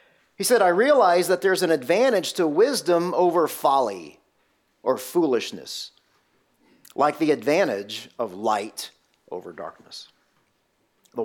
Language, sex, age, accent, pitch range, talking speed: English, male, 40-59, American, 170-230 Hz, 115 wpm